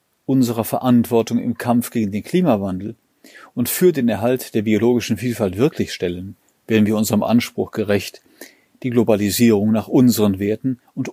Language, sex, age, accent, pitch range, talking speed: German, male, 40-59, German, 105-125 Hz, 145 wpm